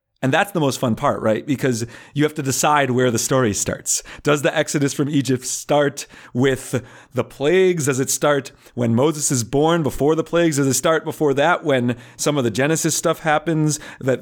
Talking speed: 205 wpm